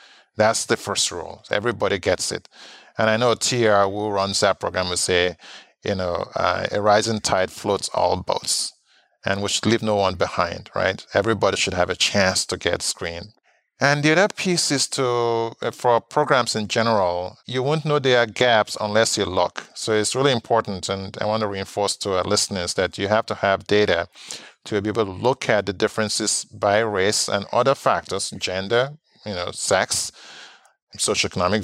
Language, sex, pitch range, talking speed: English, male, 100-120 Hz, 185 wpm